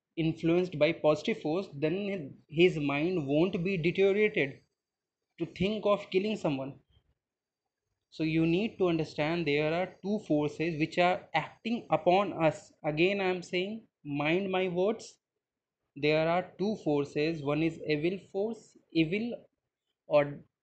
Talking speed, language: 135 wpm, English